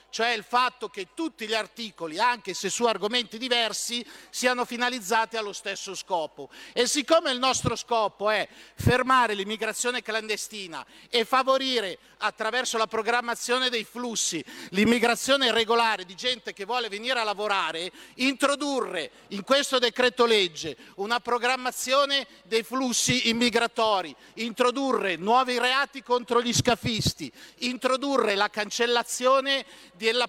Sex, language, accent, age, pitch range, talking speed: male, Italian, native, 50-69, 200-250 Hz, 125 wpm